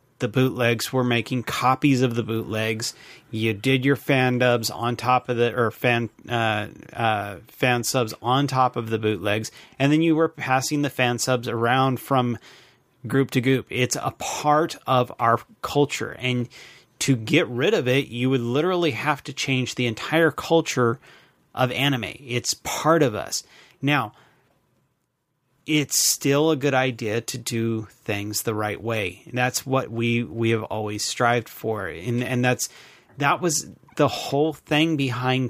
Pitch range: 115-140 Hz